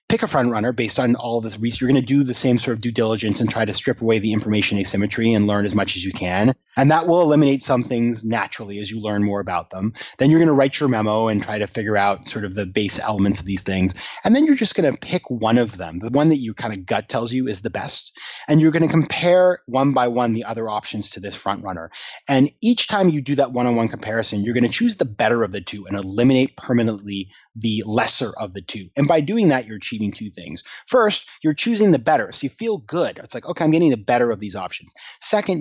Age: 30-49